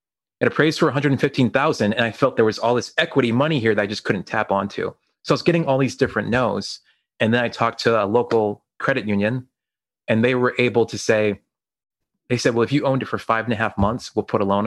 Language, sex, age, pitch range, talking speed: English, male, 30-49, 105-135 Hz, 245 wpm